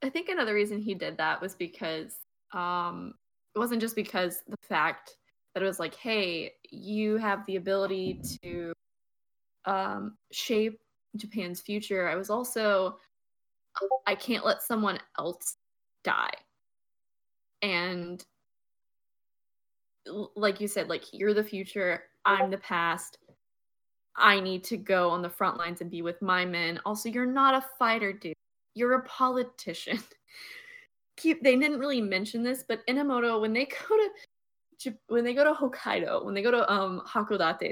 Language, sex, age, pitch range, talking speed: English, female, 10-29, 185-245 Hz, 150 wpm